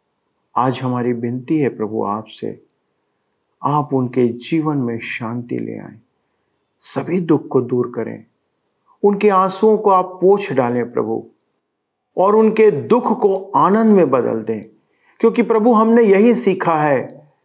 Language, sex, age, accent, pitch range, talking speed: Hindi, male, 50-69, native, 120-190 Hz, 135 wpm